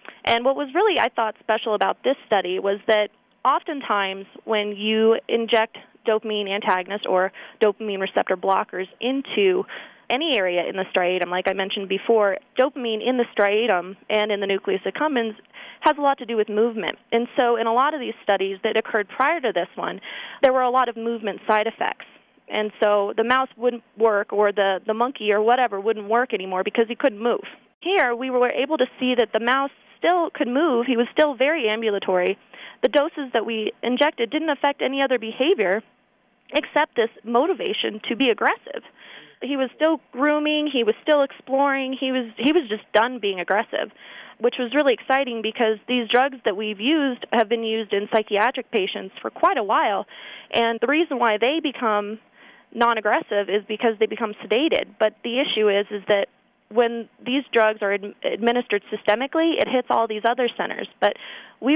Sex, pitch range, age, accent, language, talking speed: female, 210-265 Hz, 20-39, American, English, 185 wpm